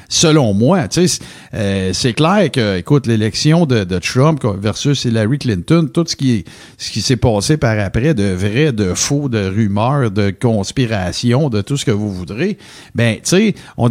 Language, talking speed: French, 175 wpm